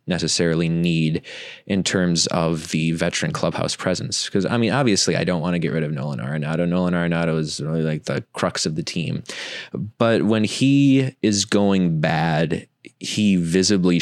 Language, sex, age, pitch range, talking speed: English, male, 20-39, 85-95 Hz, 170 wpm